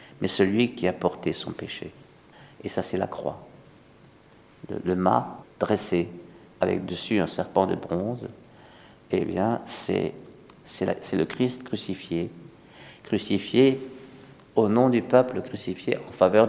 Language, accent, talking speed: French, French, 145 wpm